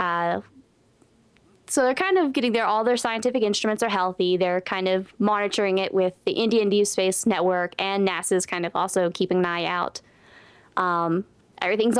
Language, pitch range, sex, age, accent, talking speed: English, 185-230 Hz, female, 20-39, American, 175 wpm